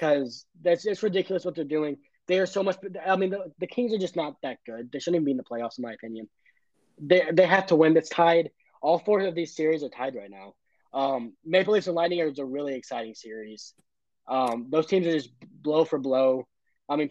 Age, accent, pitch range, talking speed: 20-39, American, 120-175 Hz, 240 wpm